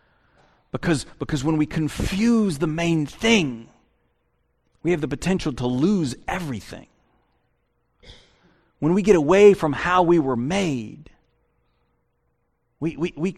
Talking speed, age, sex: 115 wpm, 40-59, male